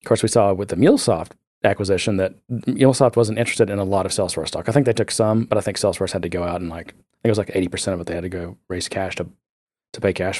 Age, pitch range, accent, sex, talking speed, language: 30-49, 90-115 Hz, American, male, 300 wpm, English